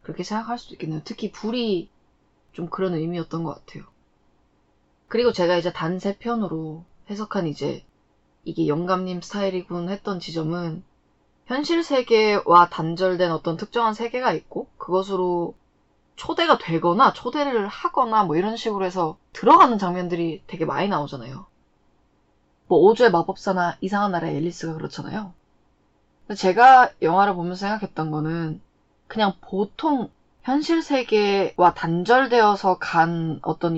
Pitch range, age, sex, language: 175-235 Hz, 20-39, female, Korean